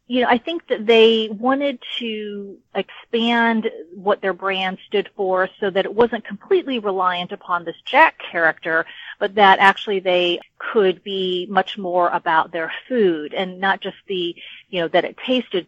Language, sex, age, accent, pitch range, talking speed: English, female, 40-59, American, 175-225 Hz, 170 wpm